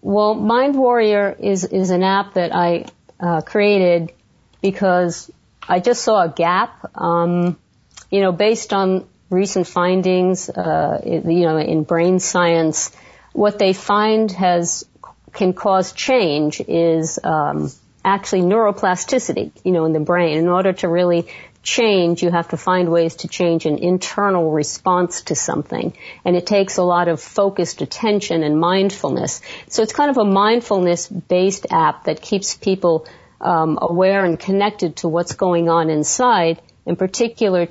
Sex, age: female, 50-69